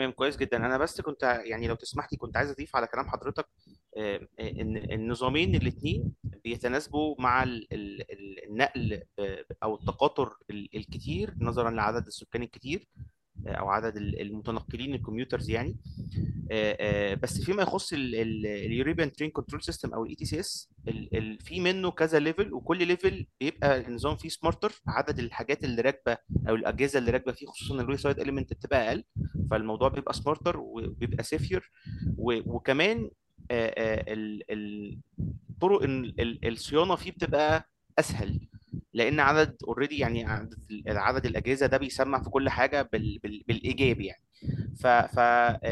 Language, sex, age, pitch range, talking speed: Arabic, male, 30-49, 110-140 Hz, 125 wpm